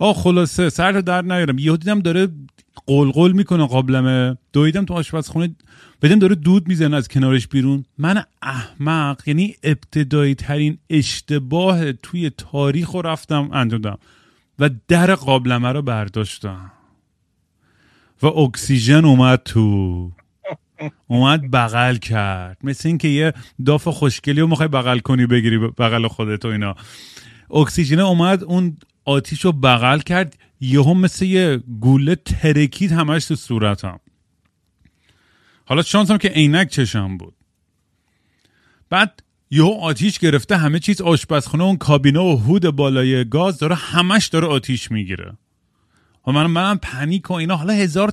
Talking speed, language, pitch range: 135 wpm, Persian, 125-175 Hz